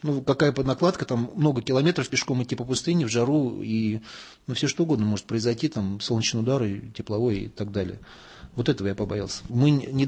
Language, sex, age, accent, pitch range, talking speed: Russian, male, 20-39, native, 110-130 Hz, 190 wpm